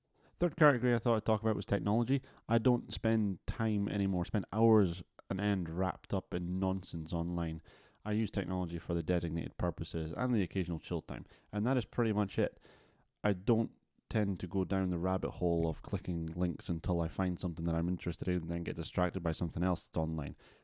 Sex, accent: male, British